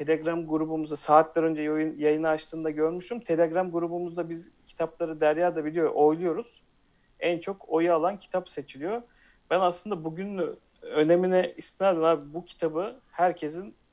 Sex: male